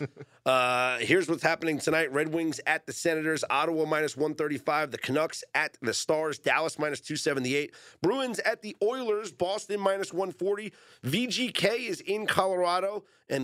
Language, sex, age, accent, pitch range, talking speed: English, male, 30-49, American, 115-160 Hz, 145 wpm